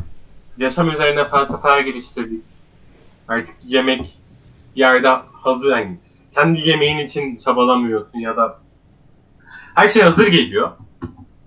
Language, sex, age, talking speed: Turkish, male, 30-49, 105 wpm